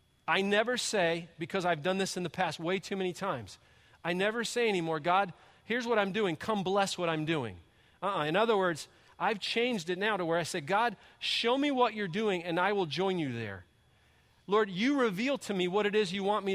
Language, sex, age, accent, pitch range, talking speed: English, male, 40-59, American, 165-210 Hz, 230 wpm